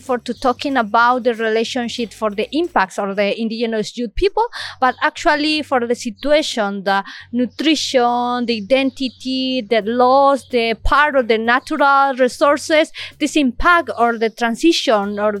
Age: 30-49